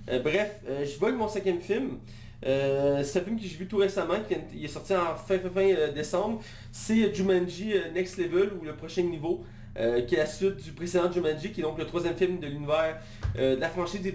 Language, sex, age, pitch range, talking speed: French, male, 30-49, 150-190 Hz, 245 wpm